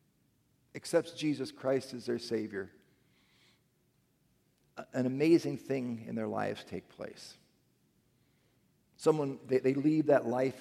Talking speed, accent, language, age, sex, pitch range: 115 wpm, American, English, 50-69, male, 130-160 Hz